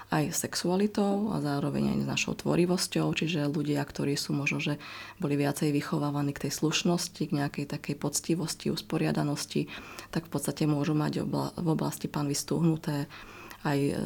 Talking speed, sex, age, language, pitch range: 150 wpm, female, 20-39, Slovak, 140-160 Hz